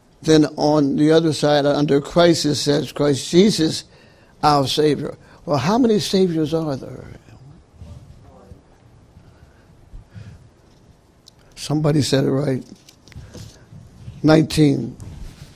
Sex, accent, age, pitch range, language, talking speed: male, American, 60-79, 130-155 Hz, English, 90 wpm